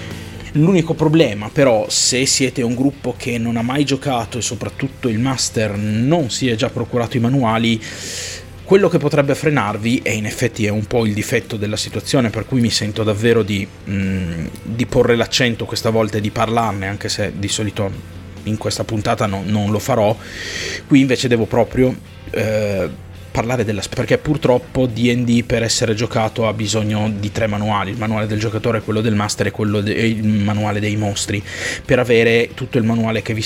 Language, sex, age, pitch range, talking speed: Italian, male, 30-49, 105-120 Hz, 180 wpm